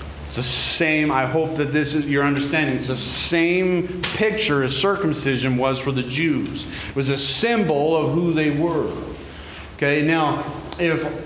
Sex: male